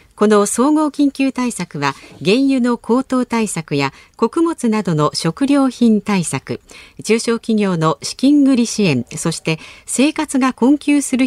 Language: Japanese